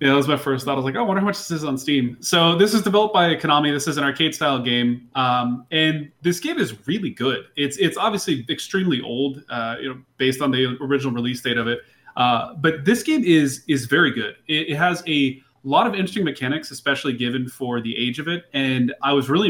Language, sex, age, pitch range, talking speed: English, male, 20-39, 125-155 Hz, 245 wpm